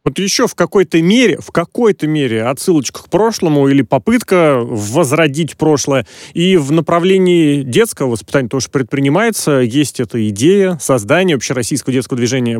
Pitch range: 130-180 Hz